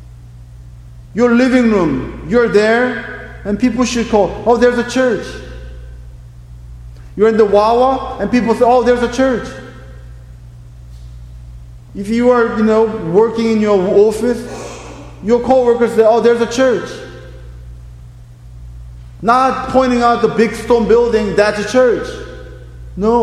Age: 50-69